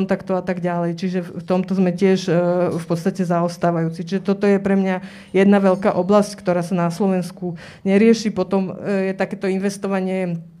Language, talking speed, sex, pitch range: Slovak, 165 wpm, female, 185-200 Hz